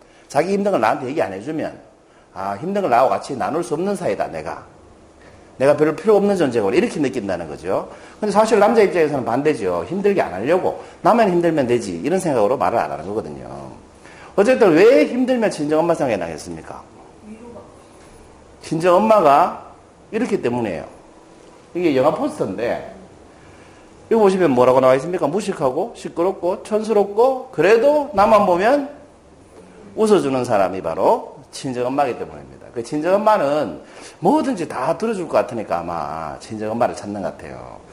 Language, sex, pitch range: Korean, male, 145-225 Hz